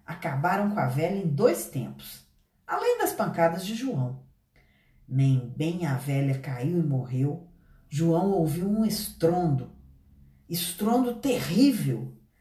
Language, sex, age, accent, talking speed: Portuguese, female, 50-69, Brazilian, 120 wpm